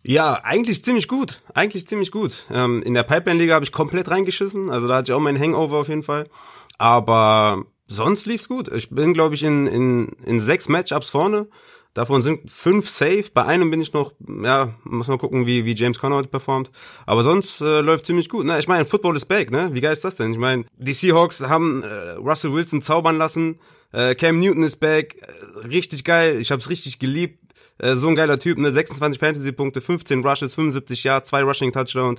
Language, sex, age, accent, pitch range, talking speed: German, male, 30-49, German, 130-160 Hz, 205 wpm